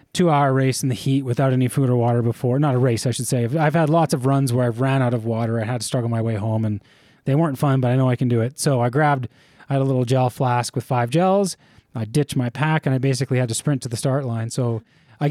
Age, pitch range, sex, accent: 20-39, 125-160 Hz, male, American